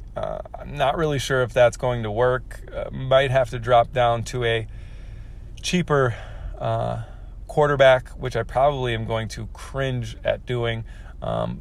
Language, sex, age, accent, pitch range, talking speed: English, male, 30-49, American, 110-125 Hz, 160 wpm